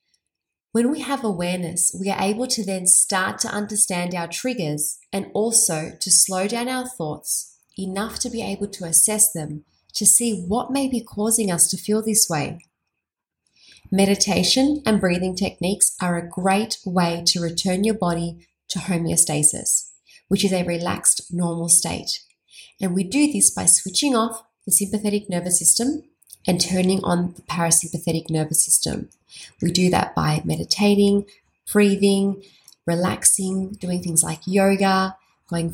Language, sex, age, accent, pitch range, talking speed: English, female, 20-39, Australian, 170-205 Hz, 150 wpm